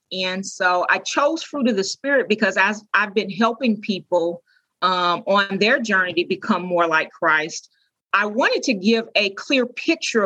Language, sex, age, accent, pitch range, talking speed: English, female, 40-59, American, 180-220 Hz, 175 wpm